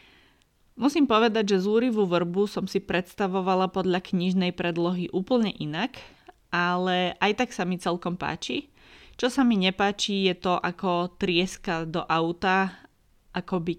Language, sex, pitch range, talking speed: Slovak, female, 165-195 Hz, 135 wpm